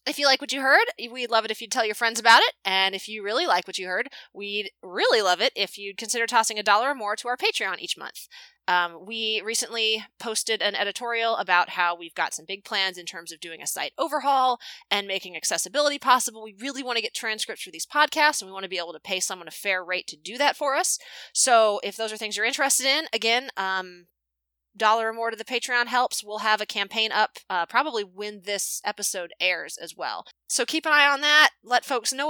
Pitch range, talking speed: 190-260 Hz, 240 wpm